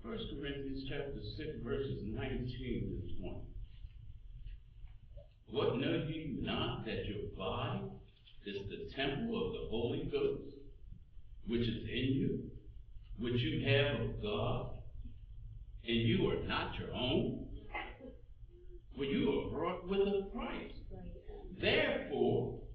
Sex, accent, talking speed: male, American, 120 wpm